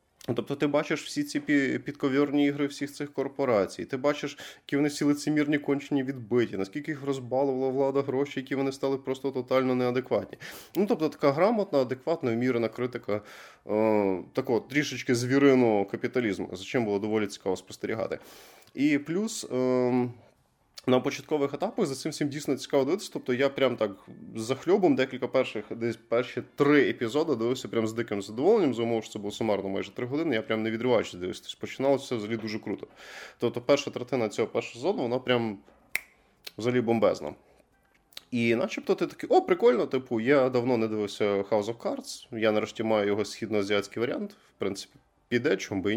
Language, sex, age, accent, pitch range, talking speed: Ukrainian, male, 20-39, native, 115-145 Hz, 170 wpm